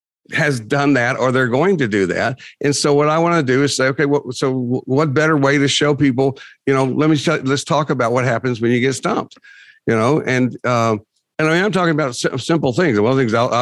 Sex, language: male, English